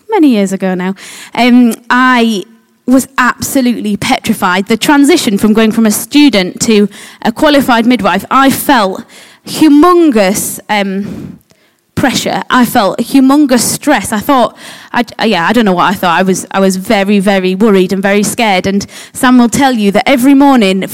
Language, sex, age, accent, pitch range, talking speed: English, female, 20-39, British, 215-290 Hz, 160 wpm